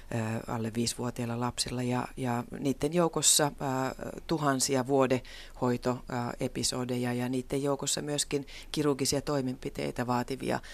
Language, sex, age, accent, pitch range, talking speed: Finnish, female, 30-49, native, 125-145 Hz, 90 wpm